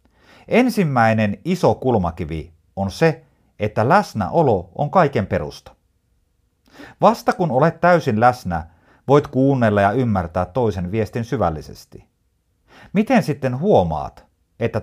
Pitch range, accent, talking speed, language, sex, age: 90-140 Hz, native, 105 wpm, Finnish, male, 50-69